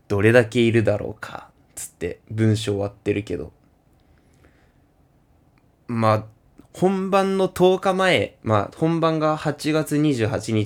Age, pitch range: 20-39, 105-150 Hz